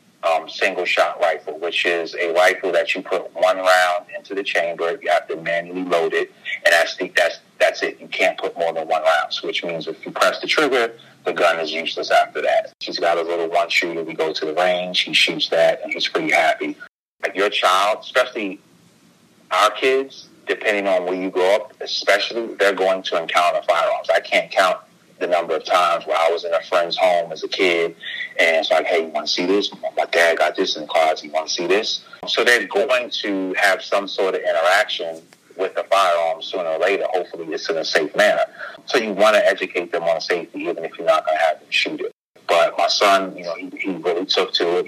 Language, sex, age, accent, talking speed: English, male, 30-49, American, 230 wpm